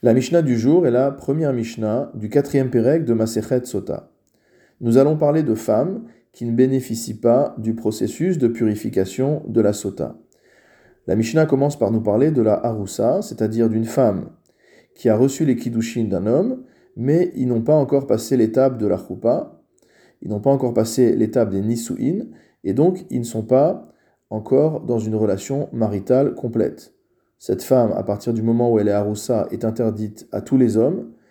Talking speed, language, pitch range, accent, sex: 180 wpm, French, 110-135 Hz, French, male